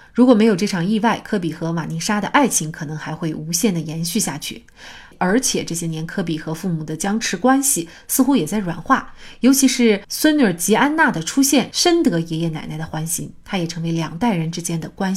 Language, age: Chinese, 30-49